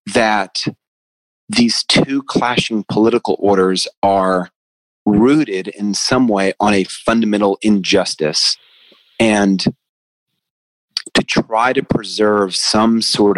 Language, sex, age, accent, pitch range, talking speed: English, male, 30-49, American, 95-120 Hz, 100 wpm